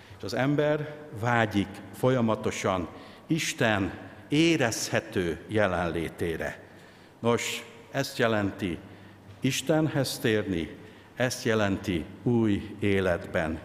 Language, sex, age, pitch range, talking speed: Hungarian, male, 60-79, 95-130 Hz, 70 wpm